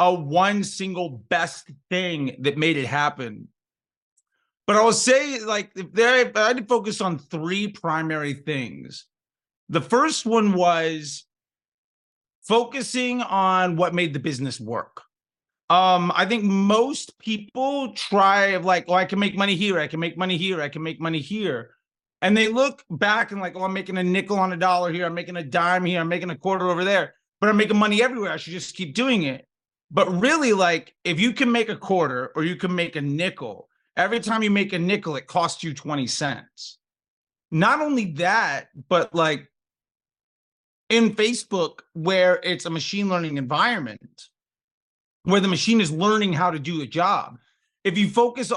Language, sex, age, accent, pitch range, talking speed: English, male, 30-49, American, 165-210 Hz, 180 wpm